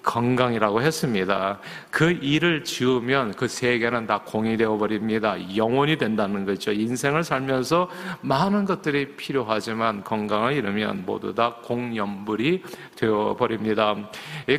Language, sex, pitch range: Korean, male, 110-150 Hz